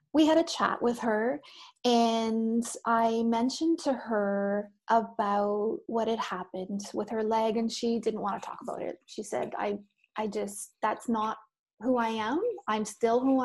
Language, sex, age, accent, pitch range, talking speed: English, female, 30-49, American, 225-275 Hz, 175 wpm